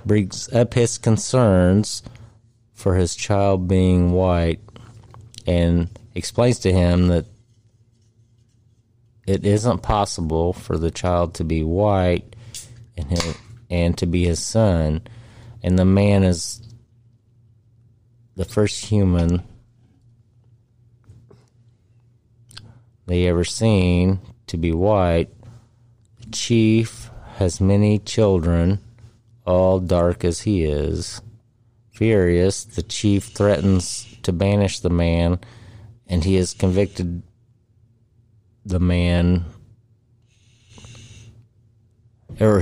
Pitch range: 90-115 Hz